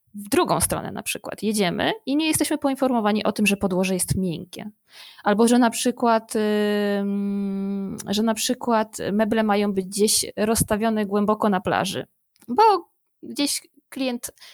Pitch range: 205-255 Hz